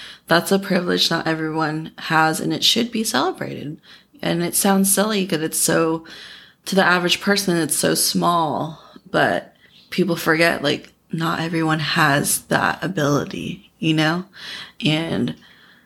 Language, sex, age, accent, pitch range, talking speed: English, female, 20-39, American, 150-175 Hz, 140 wpm